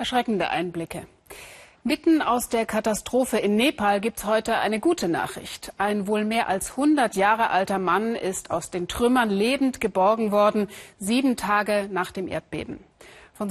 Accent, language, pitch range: German, German, 130-220 Hz